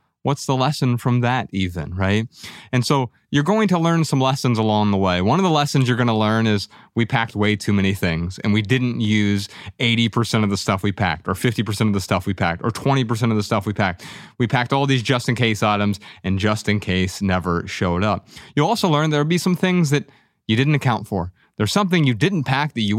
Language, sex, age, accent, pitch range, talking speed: English, male, 30-49, American, 100-130 Hz, 225 wpm